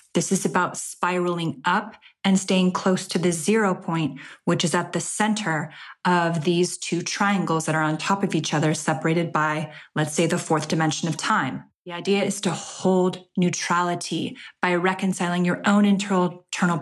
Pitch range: 160-185 Hz